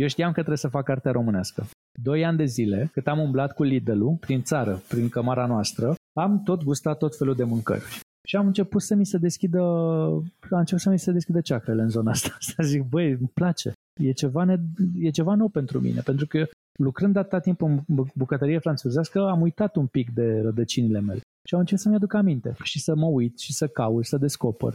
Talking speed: 215 wpm